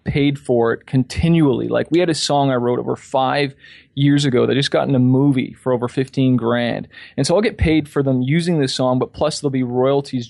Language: English